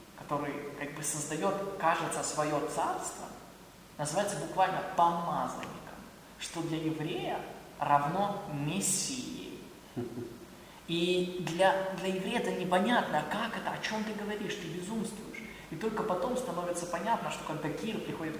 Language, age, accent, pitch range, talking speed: Russian, 20-39, native, 165-200 Hz, 125 wpm